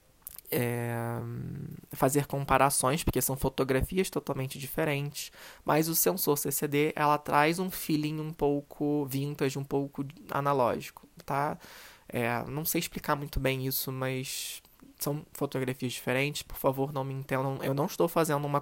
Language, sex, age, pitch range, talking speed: Portuguese, male, 20-39, 130-155 Hz, 140 wpm